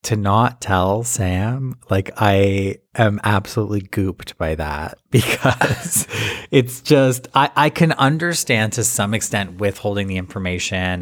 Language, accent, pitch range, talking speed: English, American, 95-125 Hz, 130 wpm